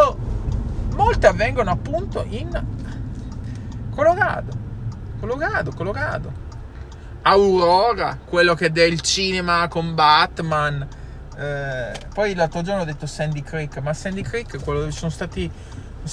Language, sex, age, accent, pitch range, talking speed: Italian, male, 20-39, native, 130-185 Hz, 120 wpm